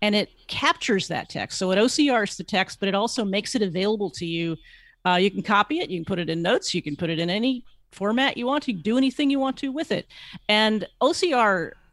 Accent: American